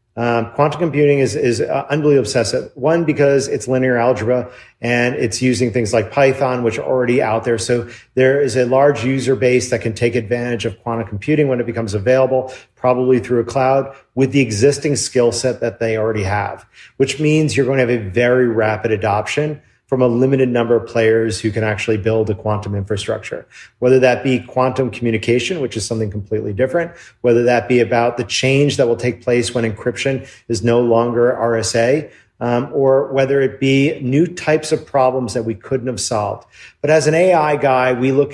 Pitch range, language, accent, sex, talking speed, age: 115-135 Hz, English, American, male, 195 wpm, 40-59